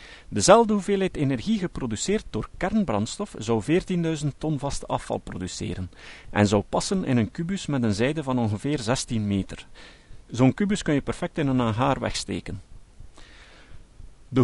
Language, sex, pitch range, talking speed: Dutch, male, 105-170 Hz, 145 wpm